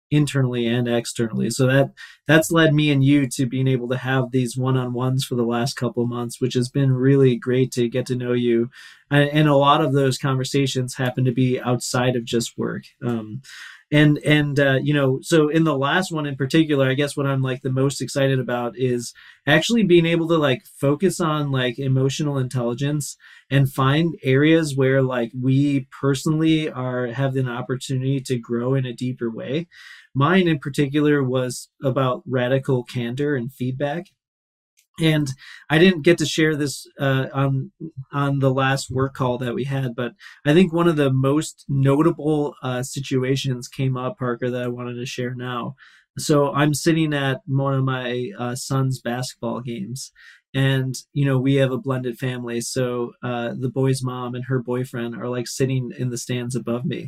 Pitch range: 125-145 Hz